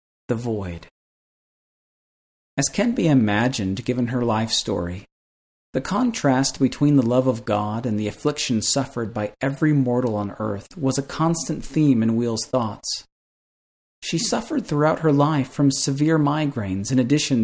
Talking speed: 150 wpm